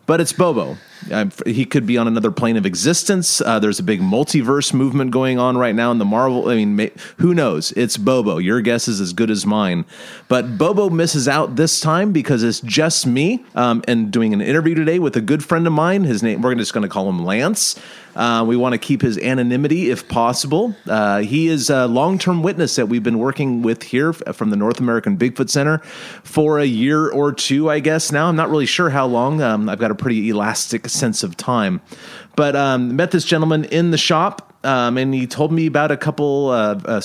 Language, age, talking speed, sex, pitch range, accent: English, 30-49, 225 wpm, male, 115-155 Hz, American